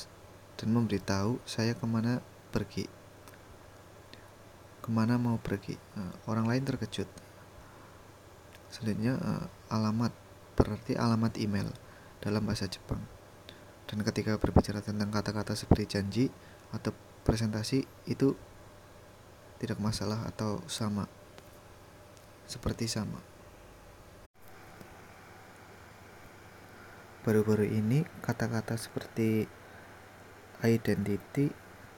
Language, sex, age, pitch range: Japanese, male, 20-39, 95-110 Hz